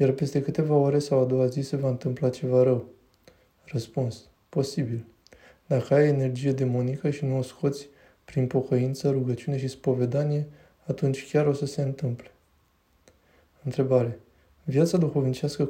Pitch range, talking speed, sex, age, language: 125-140 Hz, 140 wpm, male, 20-39, Romanian